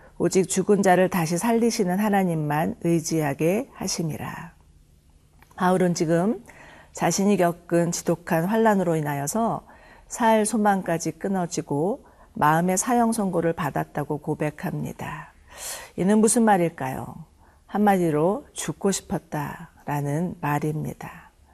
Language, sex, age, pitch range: Korean, female, 40-59, 155-195 Hz